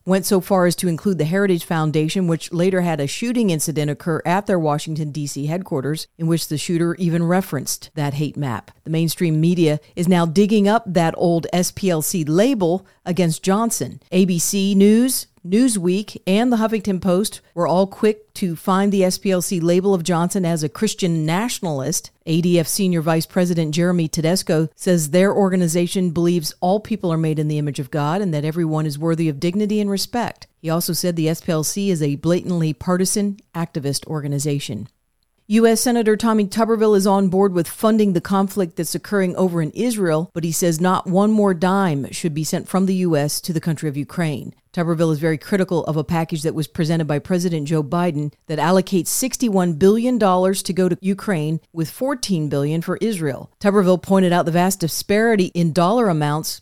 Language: English